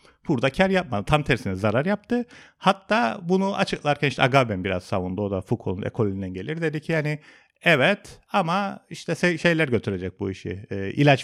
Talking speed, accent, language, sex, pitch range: 165 wpm, native, Turkish, male, 115-185 Hz